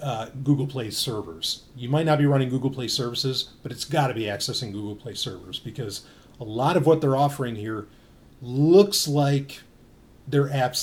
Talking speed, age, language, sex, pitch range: 185 wpm, 30-49, English, male, 125-160 Hz